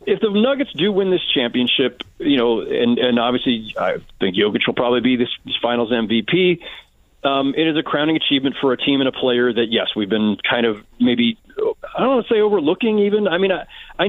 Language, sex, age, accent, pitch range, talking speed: English, male, 40-59, American, 130-190 Hz, 215 wpm